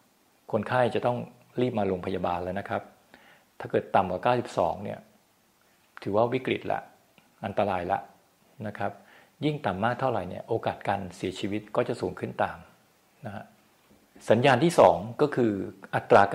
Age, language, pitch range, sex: 60-79, Thai, 95-115 Hz, male